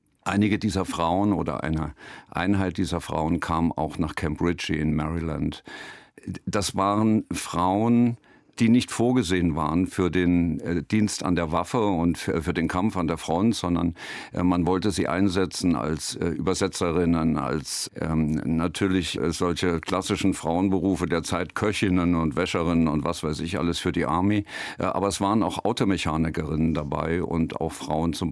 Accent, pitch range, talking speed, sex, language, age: German, 80-95 Hz, 145 wpm, male, German, 50-69